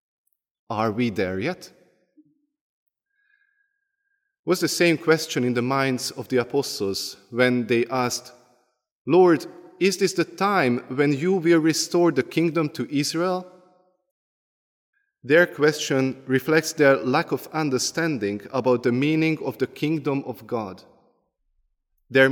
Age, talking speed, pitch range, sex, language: 30-49, 125 wpm, 130-160 Hz, male, English